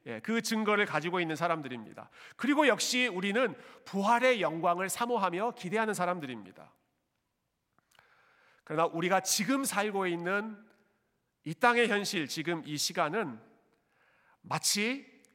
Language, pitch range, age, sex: Korean, 145-235 Hz, 40-59, male